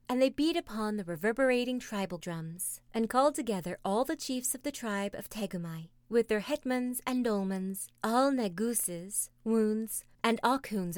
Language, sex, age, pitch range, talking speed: English, female, 30-49, 185-250 Hz, 160 wpm